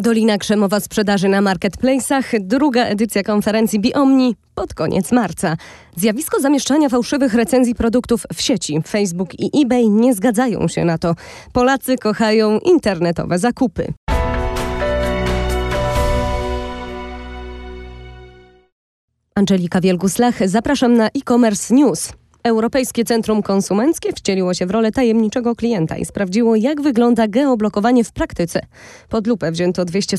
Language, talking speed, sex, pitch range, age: Polish, 115 wpm, female, 190-255 Hz, 20-39